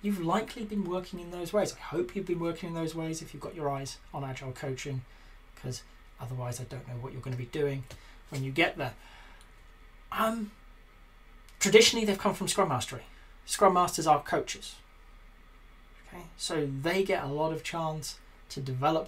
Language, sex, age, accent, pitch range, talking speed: English, male, 30-49, British, 130-175 Hz, 185 wpm